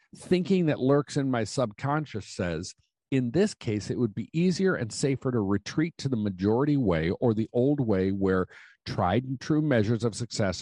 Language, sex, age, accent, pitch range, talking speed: English, male, 50-69, American, 95-135 Hz, 185 wpm